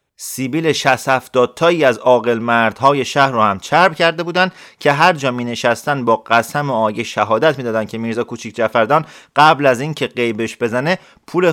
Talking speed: 175 wpm